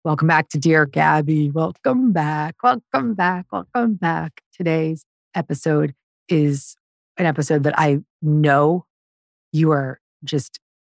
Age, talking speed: 40-59, 120 wpm